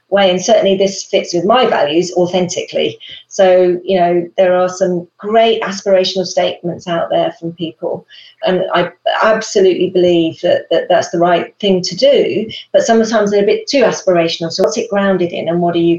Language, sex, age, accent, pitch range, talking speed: English, female, 40-59, British, 175-220 Hz, 190 wpm